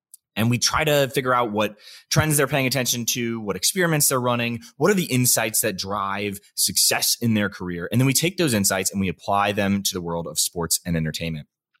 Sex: male